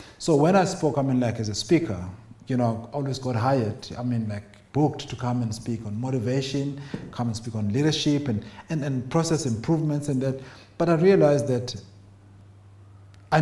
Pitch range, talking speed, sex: 110-150 Hz, 190 wpm, male